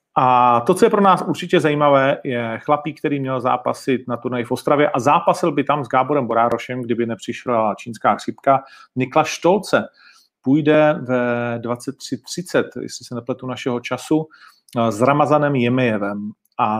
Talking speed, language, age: 150 wpm, Czech, 40-59